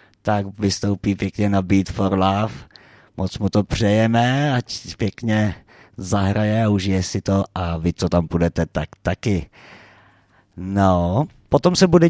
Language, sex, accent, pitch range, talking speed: Czech, male, native, 95-125 Hz, 145 wpm